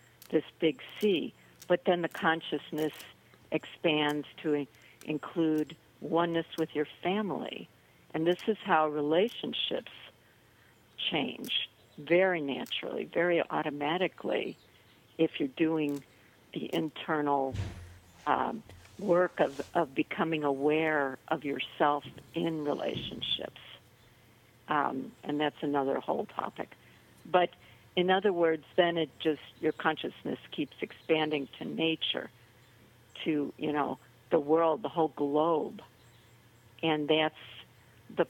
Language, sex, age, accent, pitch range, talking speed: English, female, 60-79, American, 135-165 Hz, 110 wpm